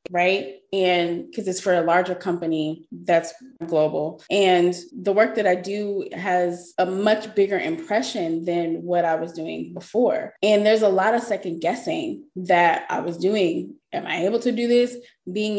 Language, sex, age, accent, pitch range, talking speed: English, female, 20-39, American, 175-205 Hz, 175 wpm